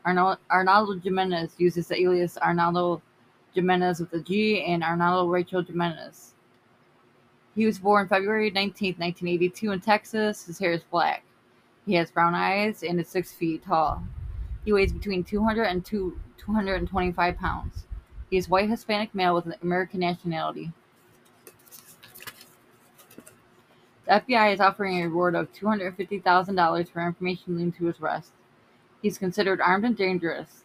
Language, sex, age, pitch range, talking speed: English, female, 20-39, 170-195 Hz, 140 wpm